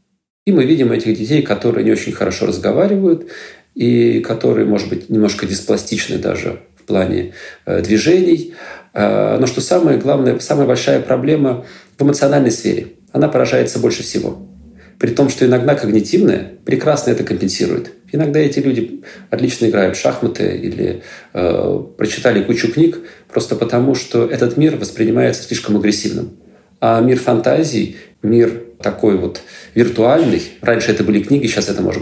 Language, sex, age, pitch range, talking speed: Russian, male, 40-59, 110-155 Hz, 140 wpm